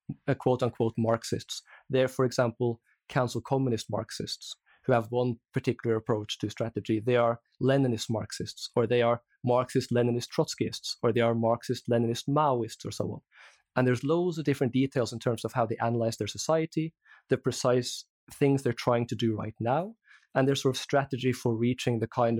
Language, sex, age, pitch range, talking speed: English, male, 20-39, 115-135 Hz, 175 wpm